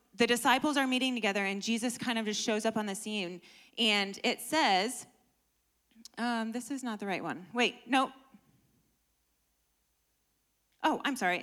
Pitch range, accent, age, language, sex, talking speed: 215-270 Hz, American, 20-39, English, female, 160 wpm